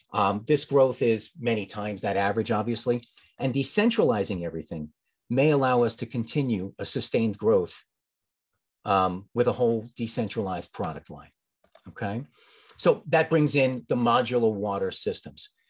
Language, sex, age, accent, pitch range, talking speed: English, male, 40-59, American, 115-155 Hz, 140 wpm